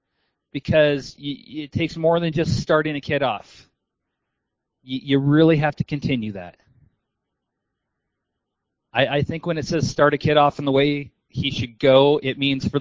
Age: 30-49